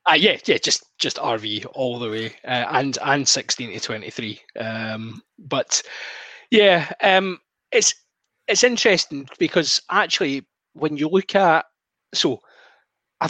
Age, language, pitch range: 20-39, English, 120-170 Hz